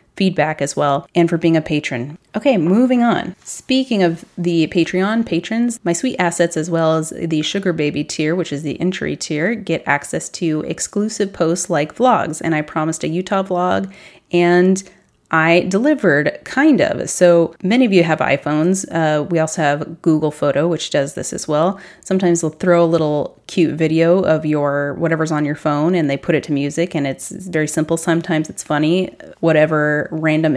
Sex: female